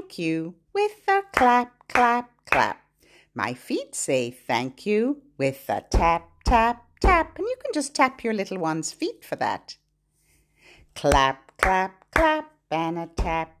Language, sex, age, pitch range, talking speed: English, female, 50-69, 160-225 Hz, 145 wpm